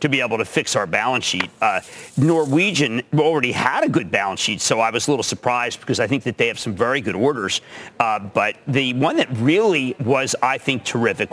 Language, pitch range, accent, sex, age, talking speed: English, 135-175 Hz, American, male, 50-69, 220 wpm